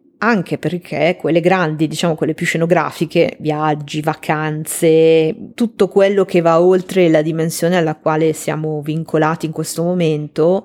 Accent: native